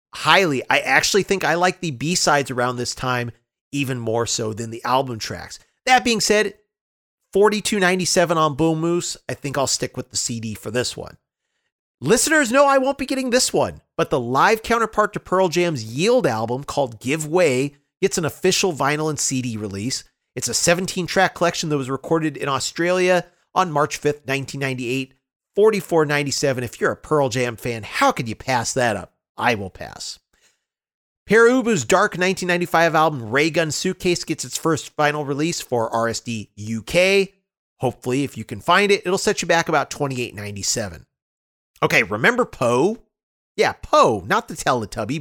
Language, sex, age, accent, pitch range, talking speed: English, male, 40-59, American, 125-180 Hz, 180 wpm